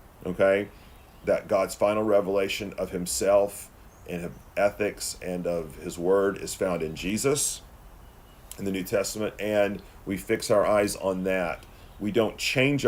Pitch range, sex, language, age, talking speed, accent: 90-105 Hz, male, English, 40-59, 150 wpm, American